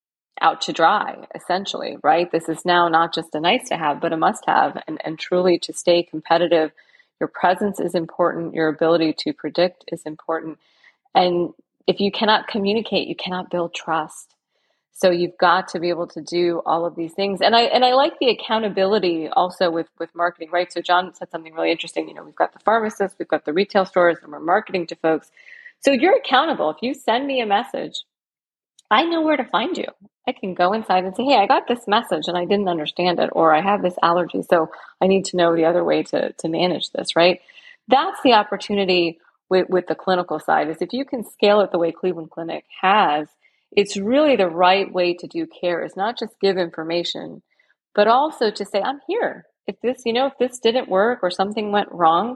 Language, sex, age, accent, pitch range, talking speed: English, female, 30-49, American, 170-215 Hz, 215 wpm